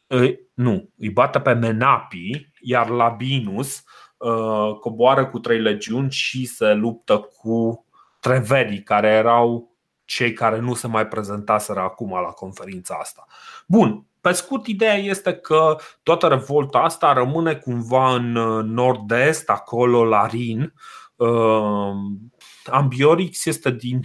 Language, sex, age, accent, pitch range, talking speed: Romanian, male, 30-49, native, 115-150 Hz, 115 wpm